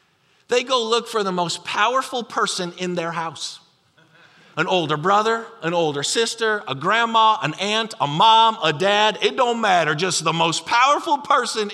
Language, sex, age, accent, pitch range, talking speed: English, male, 40-59, American, 140-220 Hz, 170 wpm